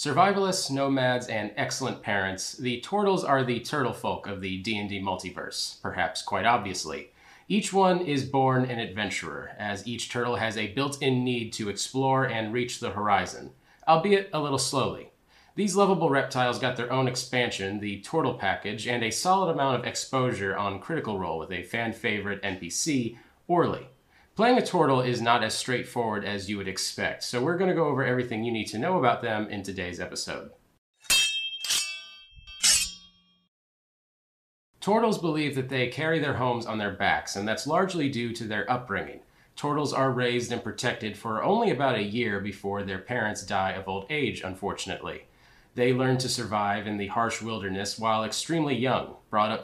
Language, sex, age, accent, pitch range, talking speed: English, male, 30-49, American, 100-135 Hz, 170 wpm